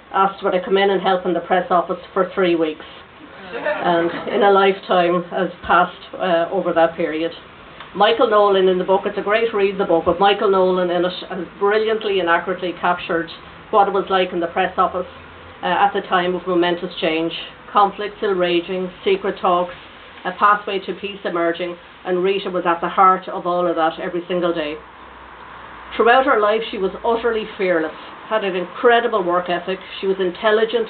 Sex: female